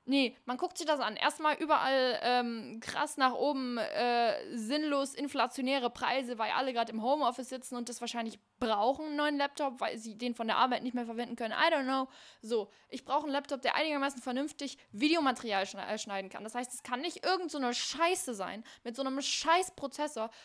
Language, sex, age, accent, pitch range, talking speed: German, female, 10-29, German, 250-325 Hz, 200 wpm